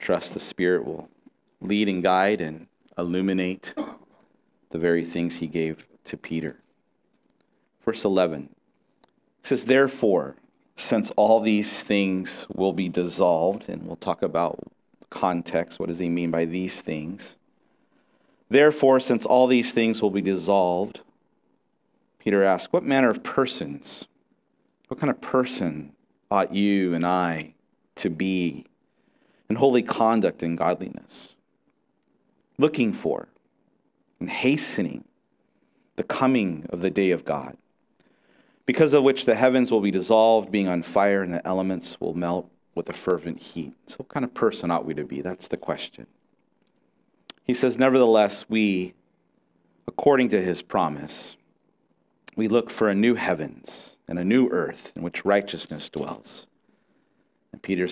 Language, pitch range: English, 85-115 Hz